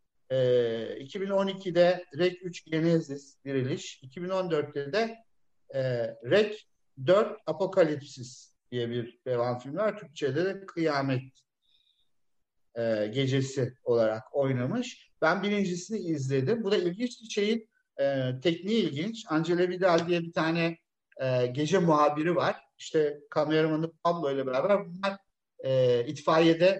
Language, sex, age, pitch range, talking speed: Turkish, male, 50-69, 135-190 Hz, 100 wpm